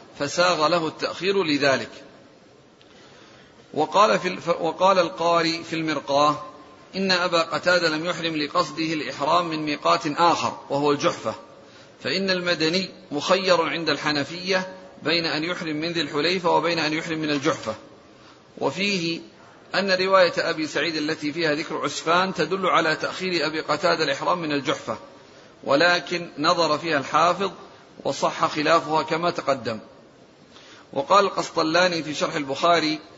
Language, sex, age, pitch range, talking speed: Arabic, male, 50-69, 155-180 Hz, 125 wpm